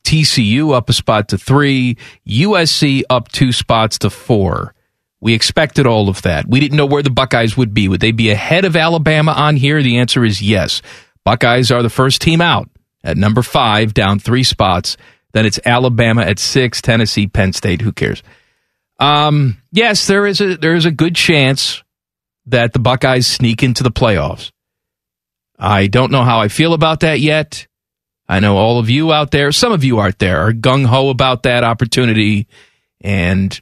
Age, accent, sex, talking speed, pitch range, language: 40-59, American, male, 185 wpm, 110-155 Hz, English